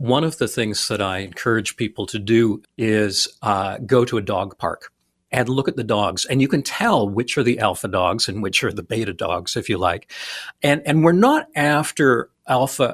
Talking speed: 215 wpm